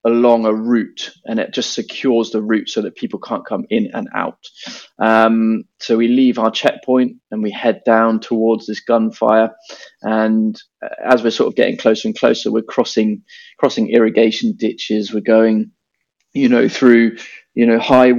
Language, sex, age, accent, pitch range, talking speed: English, male, 20-39, British, 110-120 Hz, 170 wpm